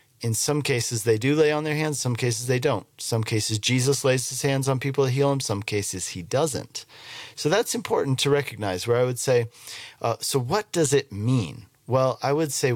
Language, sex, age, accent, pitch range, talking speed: English, male, 40-59, American, 110-135 Hz, 220 wpm